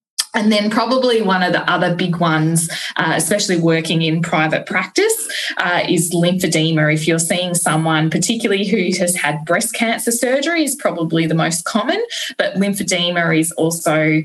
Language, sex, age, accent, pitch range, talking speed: English, female, 10-29, Australian, 170-220 Hz, 160 wpm